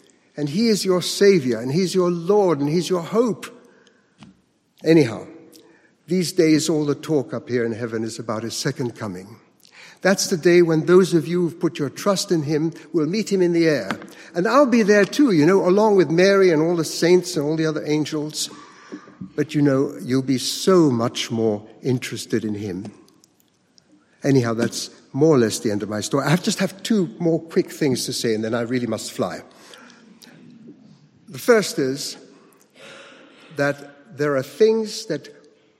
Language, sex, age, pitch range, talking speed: English, male, 60-79, 125-180 Hz, 185 wpm